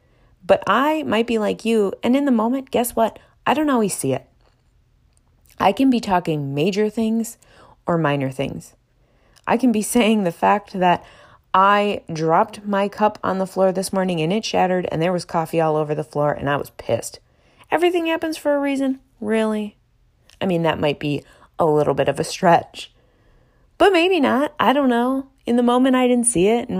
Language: English